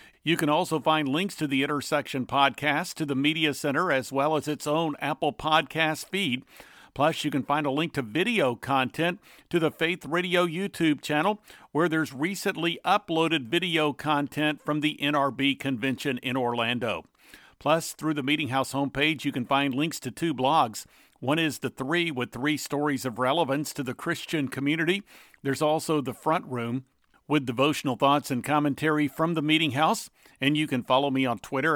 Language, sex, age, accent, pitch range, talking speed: English, male, 50-69, American, 135-160 Hz, 180 wpm